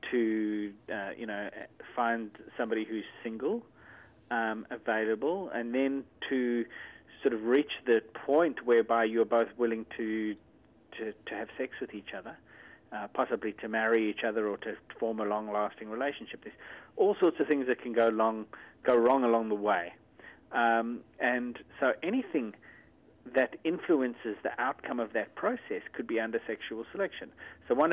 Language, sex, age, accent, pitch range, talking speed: English, male, 40-59, Australian, 110-130 Hz, 160 wpm